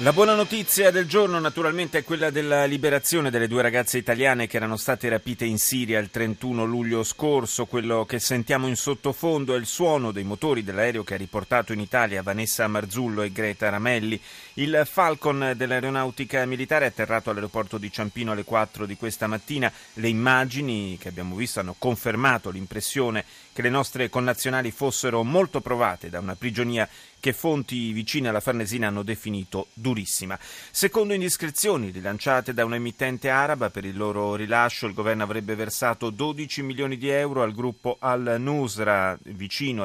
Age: 30-49